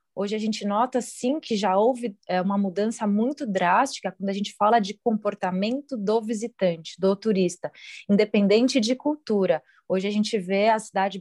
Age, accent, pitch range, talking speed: 20-39, Brazilian, 190-230 Hz, 165 wpm